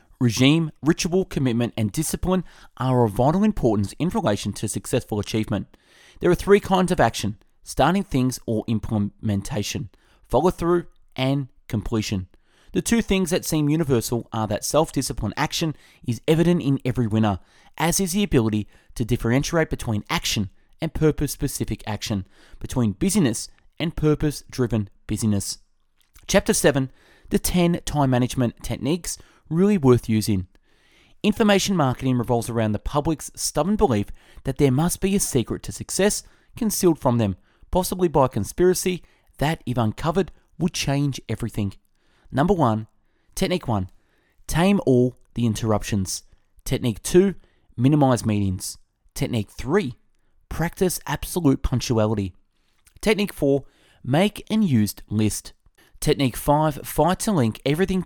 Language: English